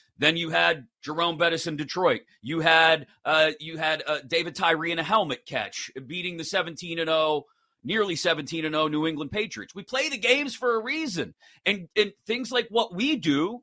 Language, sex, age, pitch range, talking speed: English, male, 40-59, 165-270 Hz, 180 wpm